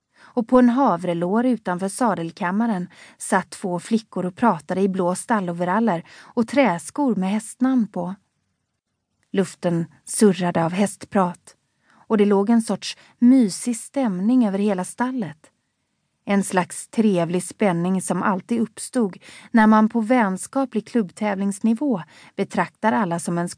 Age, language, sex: 30-49, Swedish, female